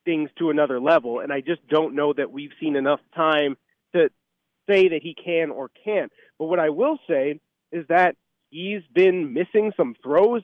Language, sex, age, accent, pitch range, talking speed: English, male, 30-49, American, 160-205 Hz, 190 wpm